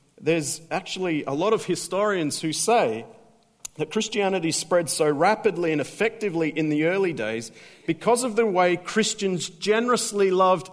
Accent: Australian